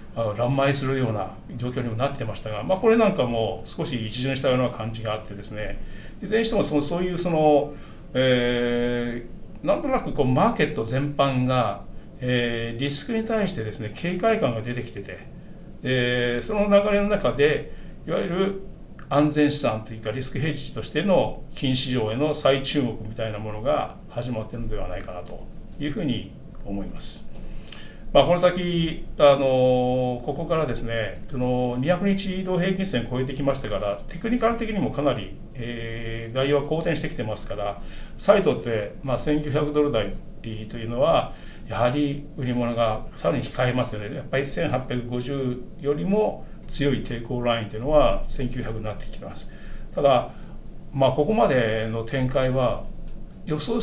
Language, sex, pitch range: Japanese, male, 115-155 Hz